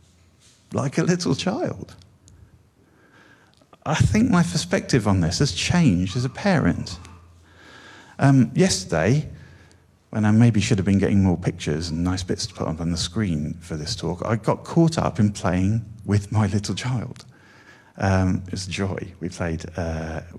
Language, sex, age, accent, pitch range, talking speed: English, male, 50-69, British, 90-110 Hz, 155 wpm